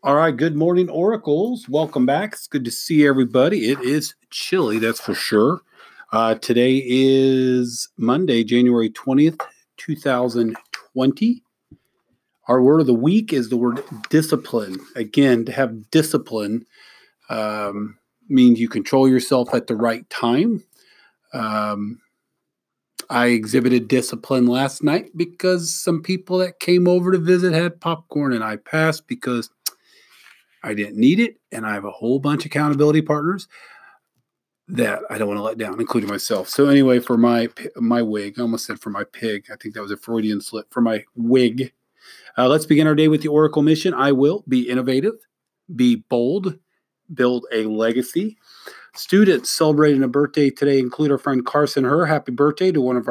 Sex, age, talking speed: male, 40-59, 165 wpm